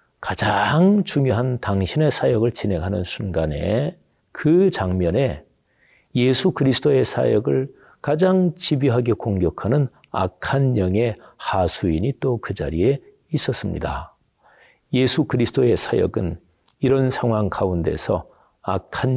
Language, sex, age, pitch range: Korean, male, 40-59, 100-135 Hz